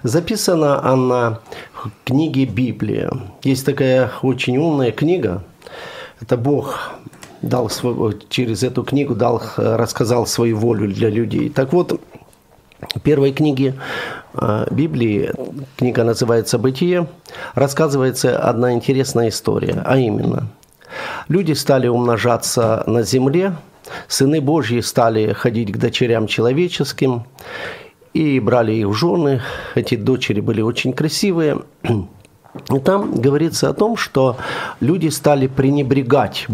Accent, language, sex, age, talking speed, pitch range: native, Ukrainian, male, 50-69, 115 wpm, 115-150 Hz